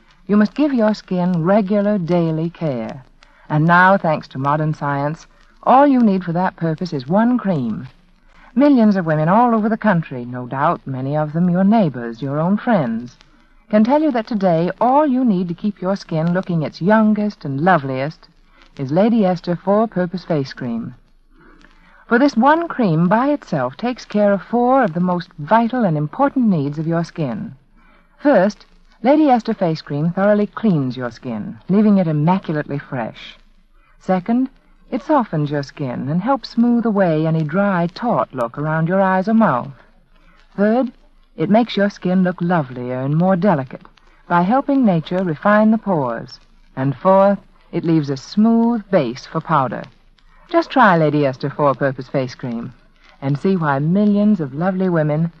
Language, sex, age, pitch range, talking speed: English, female, 60-79, 155-215 Hz, 165 wpm